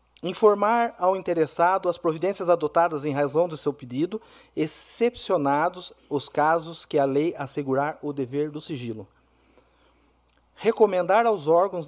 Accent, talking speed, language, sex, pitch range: Brazilian, 125 wpm, Portuguese, male, 145-185 Hz